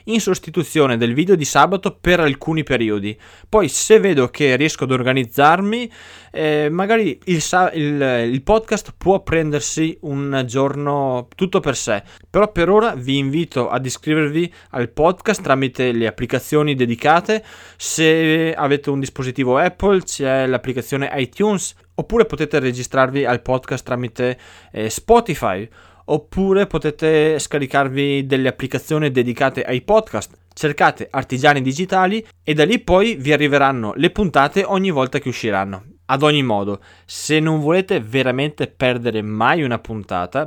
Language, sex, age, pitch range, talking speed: Italian, male, 20-39, 125-160 Hz, 135 wpm